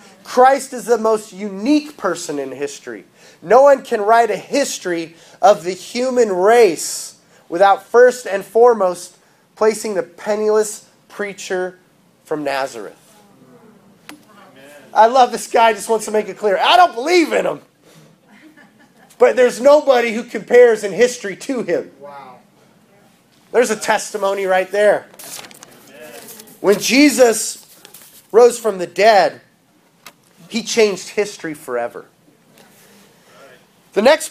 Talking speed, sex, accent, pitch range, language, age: 120 wpm, male, American, 190-230 Hz, English, 30-49